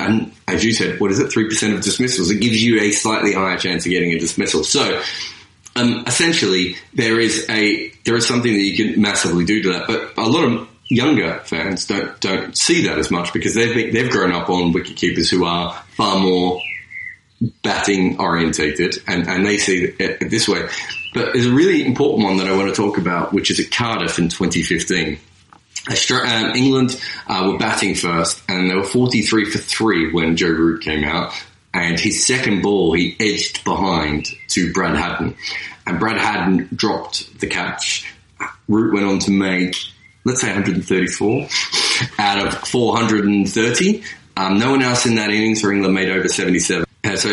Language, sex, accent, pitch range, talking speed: English, male, Australian, 90-110 Hz, 180 wpm